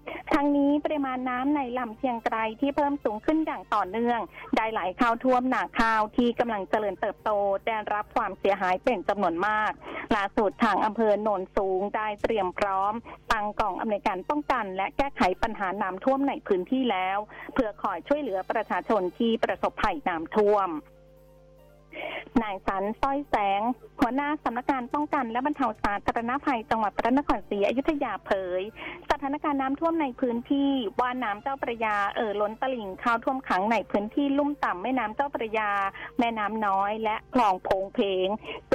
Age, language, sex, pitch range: 20-39, Thai, female, 200-270 Hz